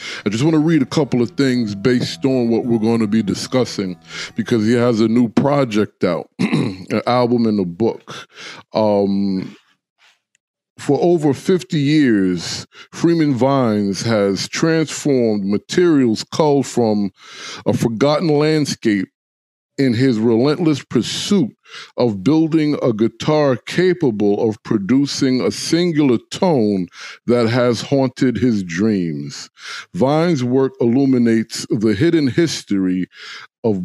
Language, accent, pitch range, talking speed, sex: English, American, 110-145 Hz, 125 wpm, male